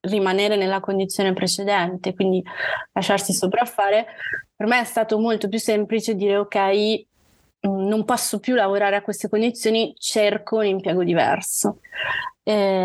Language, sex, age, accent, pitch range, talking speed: Italian, female, 20-39, native, 185-215 Hz, 130 wpm